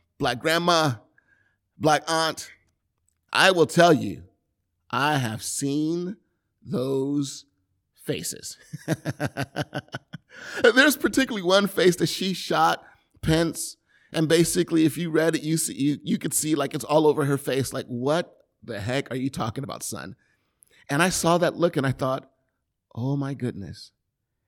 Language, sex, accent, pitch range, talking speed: English, male, American, 125-165 Hz, 140 wpm